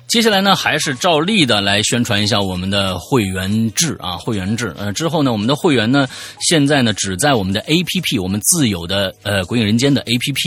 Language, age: Chinese, 30-49